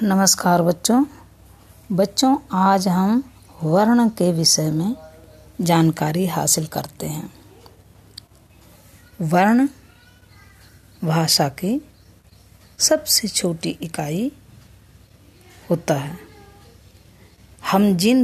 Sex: female